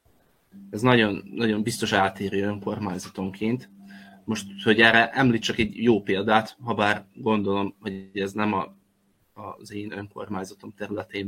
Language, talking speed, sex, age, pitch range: Hungarian, 130 wpm, male, 20-39, 100-115 Hz